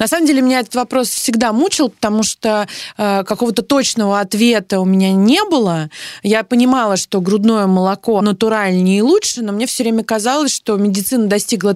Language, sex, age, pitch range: Russian, female, 20-39, 185-235 Hz